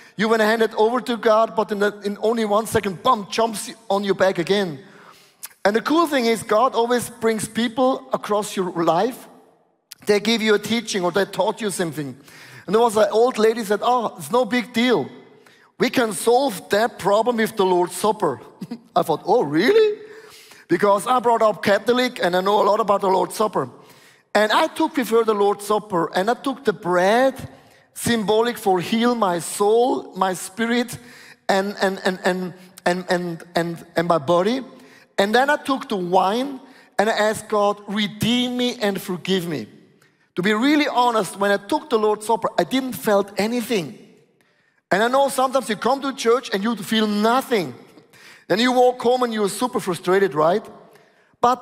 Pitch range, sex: 195-245 Hz, male